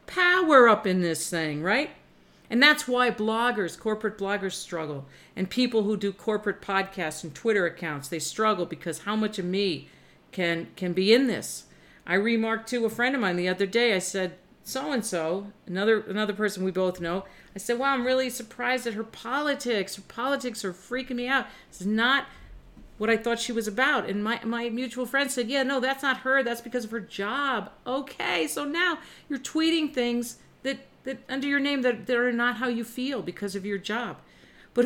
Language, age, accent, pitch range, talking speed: English, 50-69, American, 190-250 Hz, 200 wpm